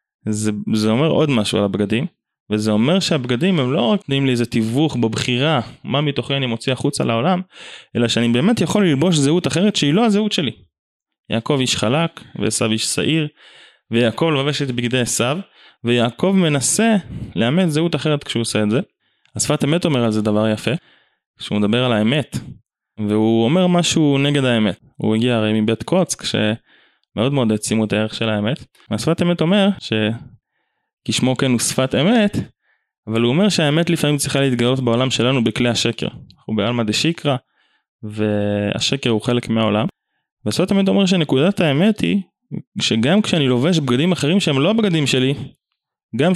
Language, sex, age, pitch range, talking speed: Hebrew, male, 20-39, 115-165 Hz, 165 wpm